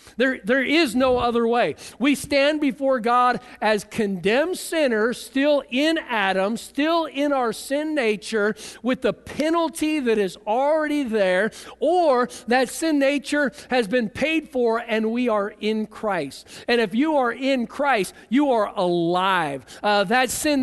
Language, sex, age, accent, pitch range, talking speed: English, male, 50-69, American, 210-265 Hz, 155 wpm